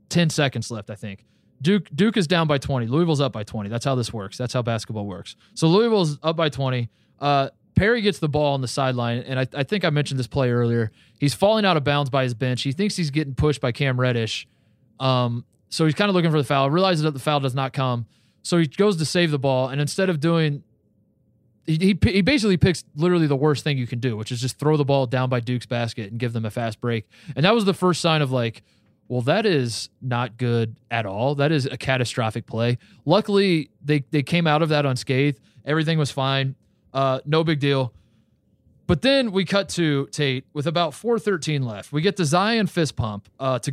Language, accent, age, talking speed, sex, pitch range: English, American, 20-39, 235 wpm, male, 120-160 Hz